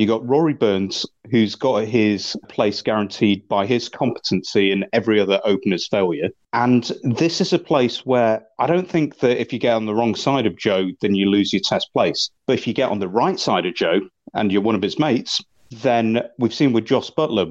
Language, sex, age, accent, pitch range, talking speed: English, male, 30-49, British, 100-120 Hz, 220 wpm